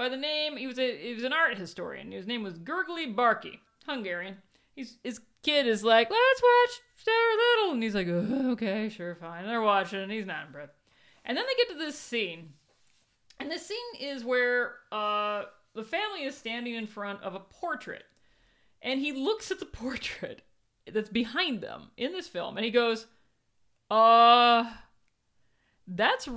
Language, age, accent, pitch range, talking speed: English, 40-59, American, 205-285 Hz, 180 wpm